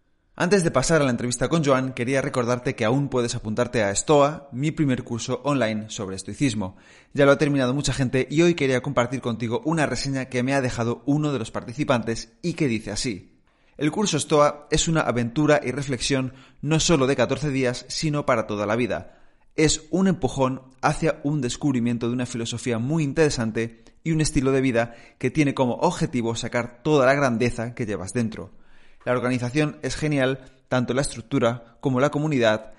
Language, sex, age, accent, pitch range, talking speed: Spanish, male, 30-49, Spanish, 115-145 Hz, 185 wpm